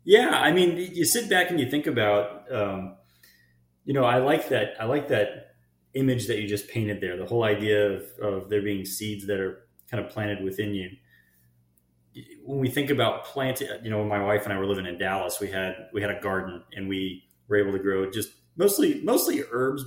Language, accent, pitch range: English, American, 95-120 Hz